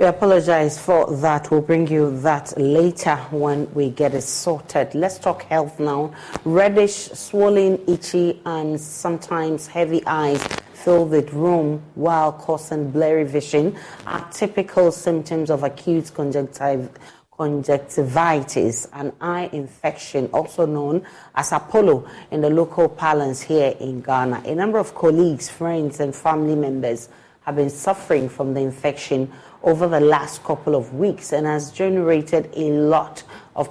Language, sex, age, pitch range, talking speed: English, female, 40-59, 145-170 Hz, 140 wpm